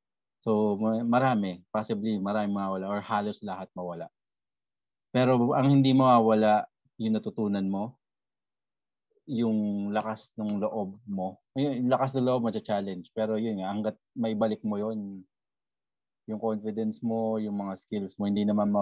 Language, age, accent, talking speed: English, 20-39, Filipino, 135 wpm